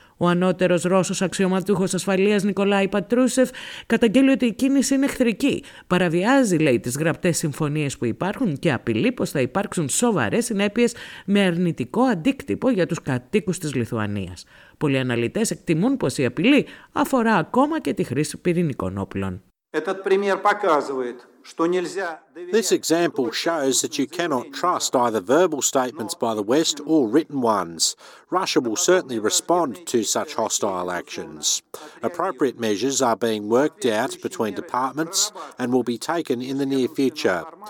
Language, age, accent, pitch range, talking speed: Greek, 50-69, native, 130-200 Hz, 140 wpm